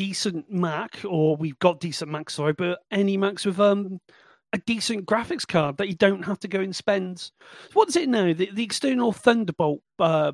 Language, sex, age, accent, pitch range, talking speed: English, male, 40-59, British, 165-220 Hz, 190 wpm